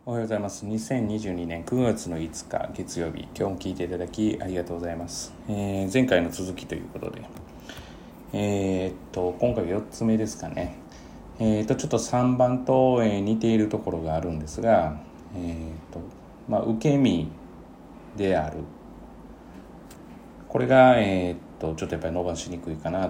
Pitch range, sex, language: 85-115 Hz, male, Japanese